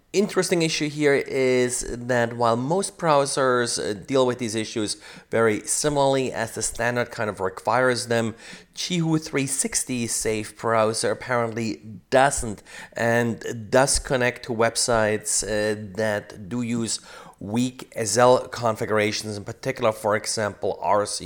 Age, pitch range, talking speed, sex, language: 30-49, 110-135 Hz, 125 wpm, male, English